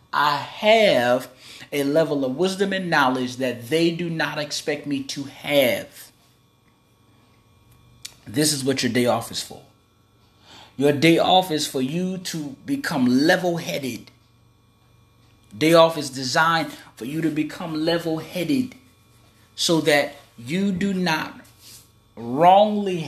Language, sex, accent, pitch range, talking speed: English, male, American, 120-150 Hz, 125 wpm